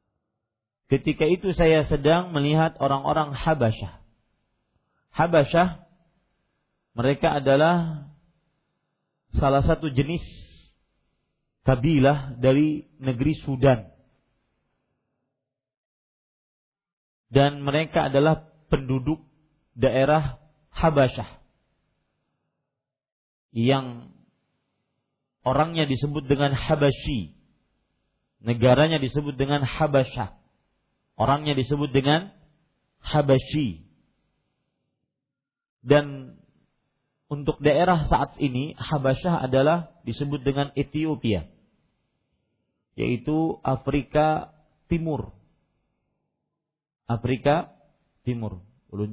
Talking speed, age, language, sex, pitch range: 65 wpm, 40-59, Malay, male, 120-155 Hz